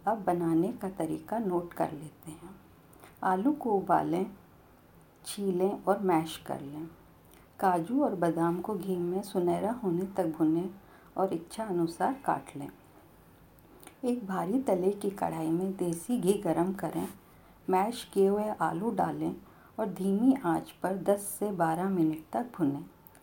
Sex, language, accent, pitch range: female, Hindi, native, 170-200 Hz